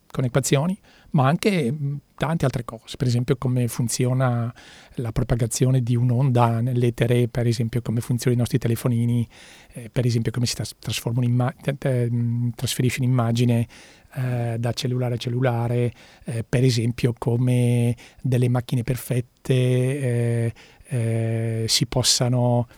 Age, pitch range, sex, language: 40-59, 120-135 Hz, male, Italian